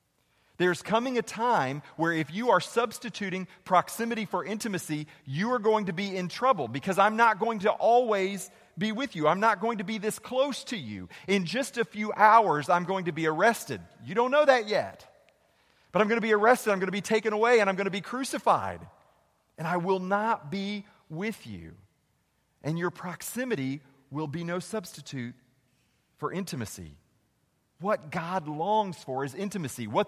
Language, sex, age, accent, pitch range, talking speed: English, male, 40-59, American, 160-220 Hz, 185 wpm